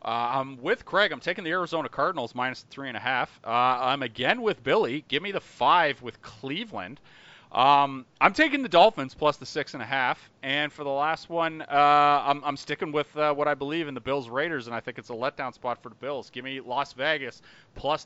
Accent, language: American, English